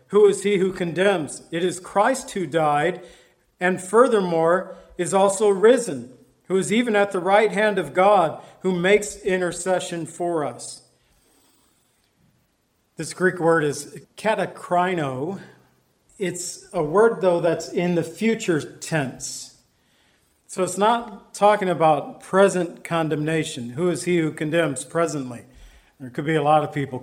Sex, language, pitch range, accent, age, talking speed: male, English, 155-190 Hz, American, 50-69, 140 wpm